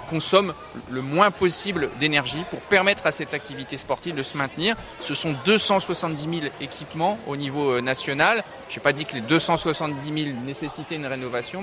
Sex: male